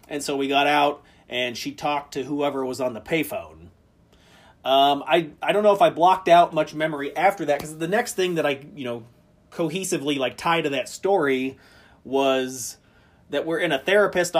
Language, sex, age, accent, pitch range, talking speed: English, male, 30-49, American, 125-160 Hz, 195 wpm